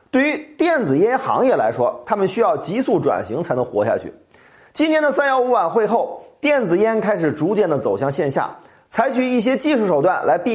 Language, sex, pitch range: Chinese, male, 200-280 Hz